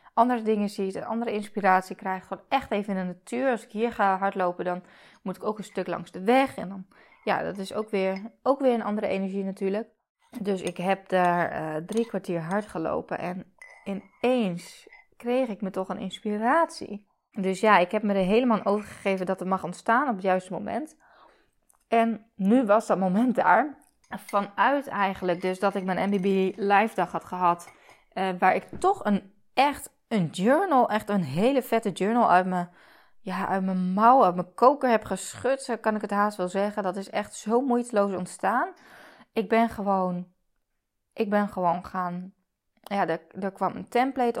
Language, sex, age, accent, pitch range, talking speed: Dutch, female, 20-39, Dutch, 185-230 Hz, 190 wpm